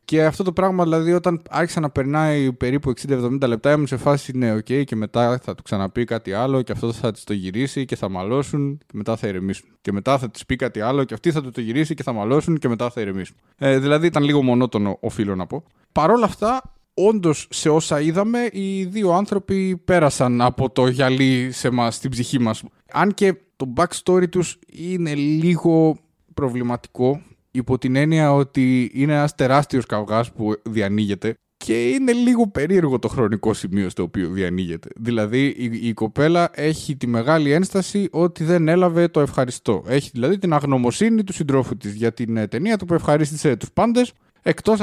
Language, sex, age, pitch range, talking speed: Greek, male, 20-39, 115-165 Hz, 190 wpm